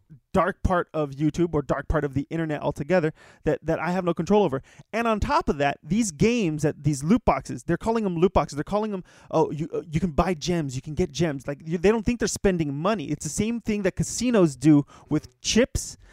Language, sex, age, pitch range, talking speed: English, male, 20-39, 155-205 Hz, 230 wpm